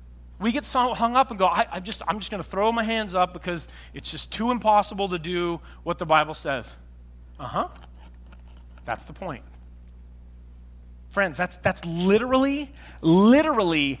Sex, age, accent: male, 30-49, American